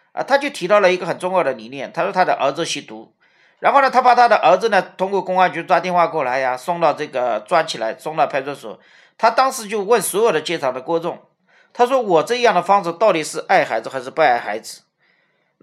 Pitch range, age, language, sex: 155-200 Hz, 50-69, Chinese, male